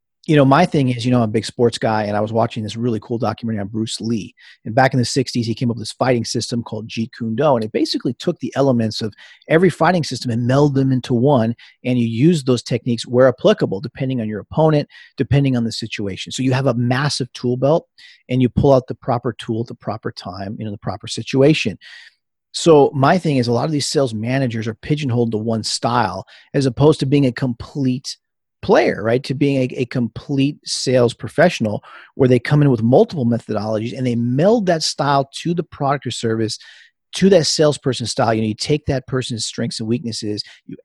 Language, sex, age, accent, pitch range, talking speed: English, male, 40-59, American, 115-140 Hz, 225 wpm